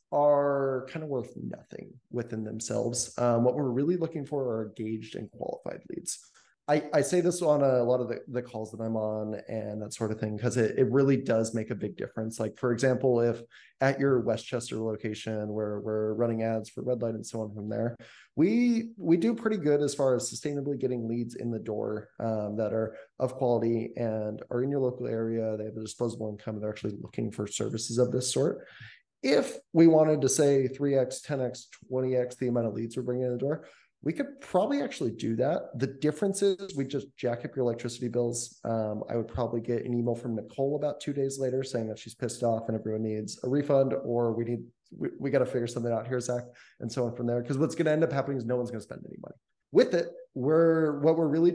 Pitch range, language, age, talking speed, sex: 115-140 Hz, English, 20-39, 235 wpm, male